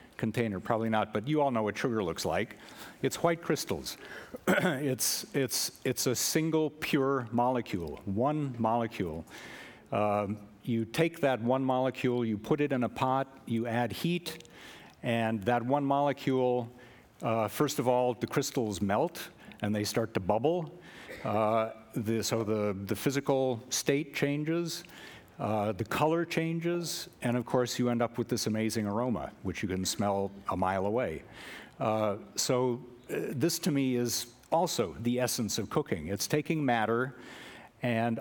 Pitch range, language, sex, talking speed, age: 105-135 Hz, English, male, 155 wpm, 60-79